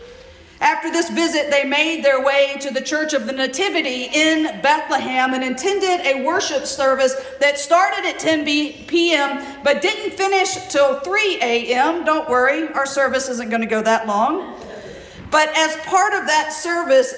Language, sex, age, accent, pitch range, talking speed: English, female, 50-69, American, 265-335 Hz, 165 wpm